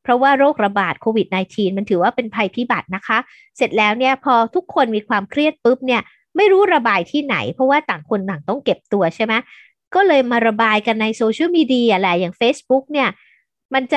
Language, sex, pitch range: Thai, female, 205-275 Hz